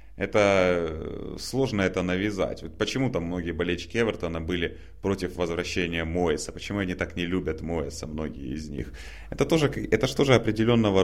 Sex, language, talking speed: male, Russian, 145 wpm